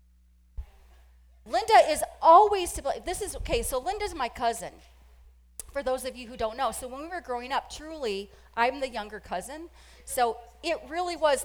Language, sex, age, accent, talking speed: English, female, 30-49, American, 170 wpm